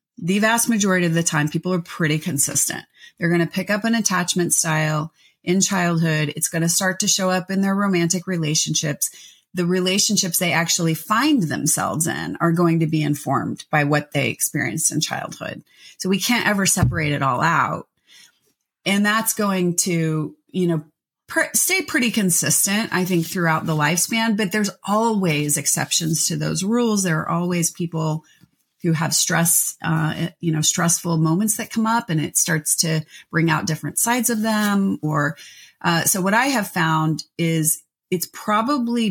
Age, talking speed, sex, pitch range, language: 30-49, 175 wpm, female, 160-200 Hz, English